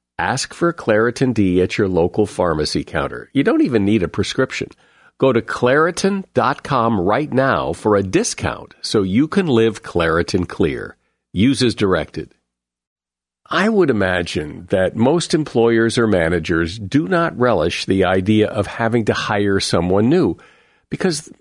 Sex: male